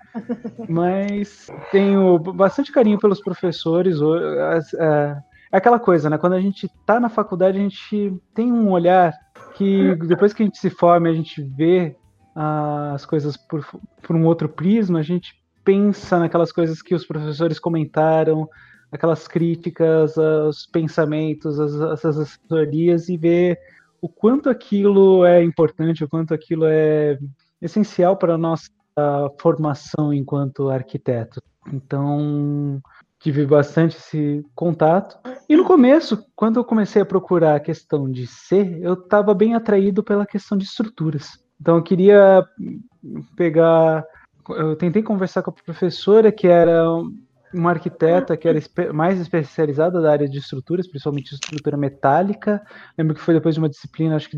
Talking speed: 145 wpm